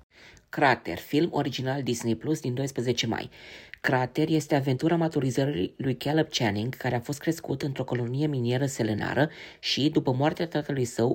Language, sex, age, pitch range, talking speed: Romanian, female, 20-39, 125-150 Hz, 150 wpm